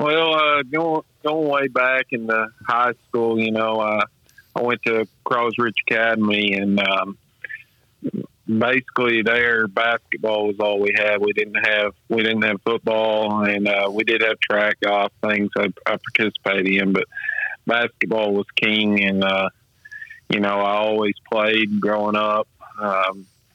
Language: English